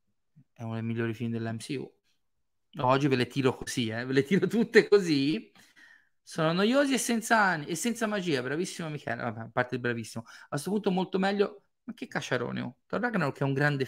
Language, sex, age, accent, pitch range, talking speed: Italian, male, 30-49, native, 130-195 Hz, 190 wpm